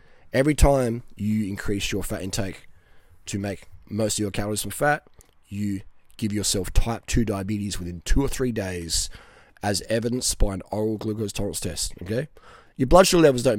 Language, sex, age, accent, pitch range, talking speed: English, male, 20-39, Australian, 100-125 Hz, 175 wpm